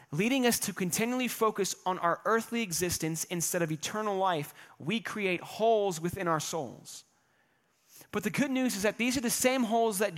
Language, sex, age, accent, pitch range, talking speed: English, male, 30-49, American, 175-230 Hz, 185 wpm